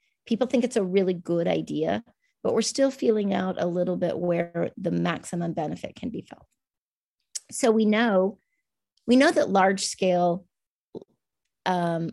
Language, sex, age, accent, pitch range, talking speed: English, female, 30-49, American, 165-215 Hz, 155 wpm